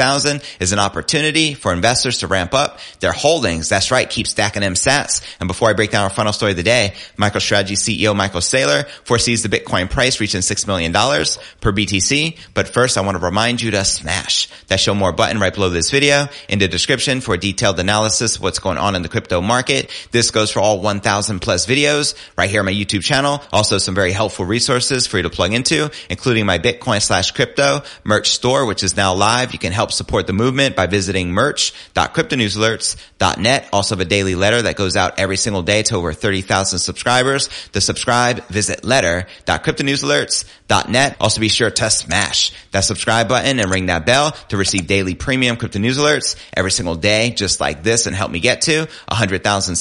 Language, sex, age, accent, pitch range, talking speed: English, male, 30-49, American, 95-120 Hz, 200 wpm